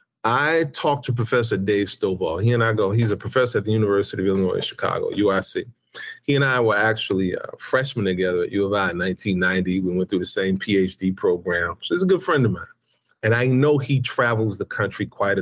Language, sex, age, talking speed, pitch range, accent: English, male, 40-59, 220 wpm, 95-140 Hz, American